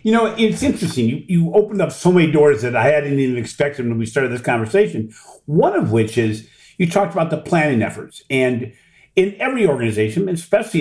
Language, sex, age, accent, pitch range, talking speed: English, male, 50-69, American, 130-175 Hz, 200 wpm